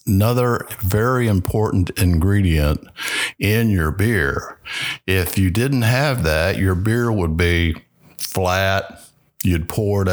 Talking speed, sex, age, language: 120 wpm, male, 60-79, English